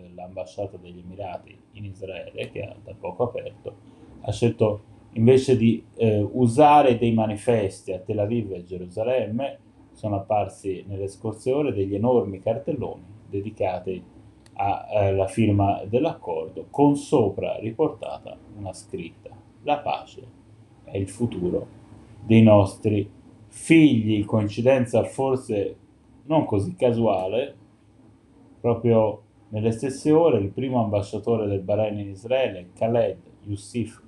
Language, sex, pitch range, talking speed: Italian, male, 100-115 Hz, 115 wpm